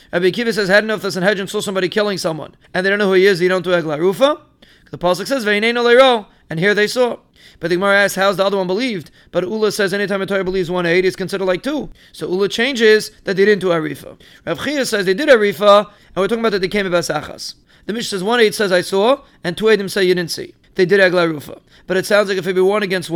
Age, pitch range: 30-49, 180-215 Hz